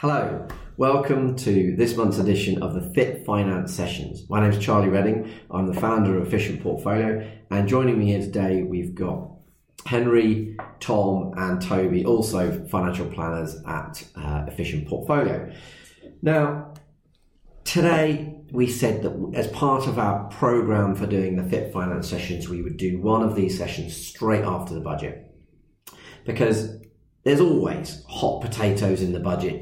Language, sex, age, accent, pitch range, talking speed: English, male, 30-49, British, 90-120 Hz, 150 wpm